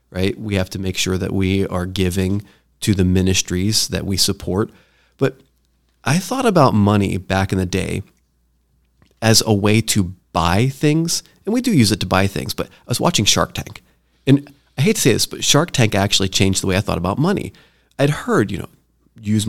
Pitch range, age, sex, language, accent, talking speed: 95-130 Hz, 30-49, male, English, American, 205 wpm